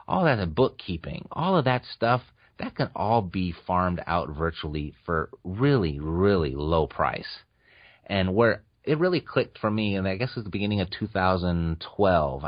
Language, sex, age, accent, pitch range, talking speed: English, male, 30-49, American, 85-115 Hz, 175 wpm